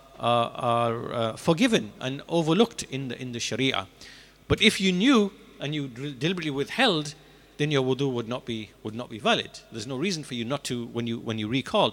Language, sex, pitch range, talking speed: English, male, 130-175 Hz, 200 wpm